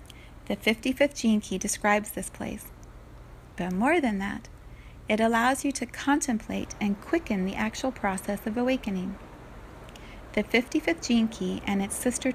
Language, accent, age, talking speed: English, American, 30-49, 145 wpm